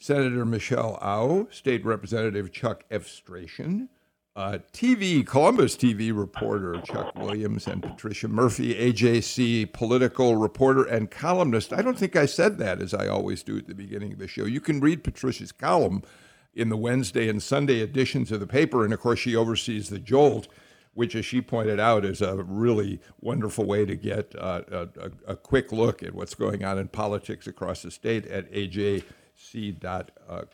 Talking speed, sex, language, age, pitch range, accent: 175 wpm, male, English, 60-79, 105-135 Hz, American